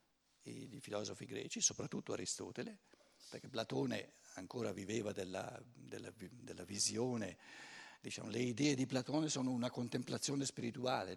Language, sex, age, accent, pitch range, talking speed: Italian, male, 60-79, native, 130-195 Hz, 115 wpm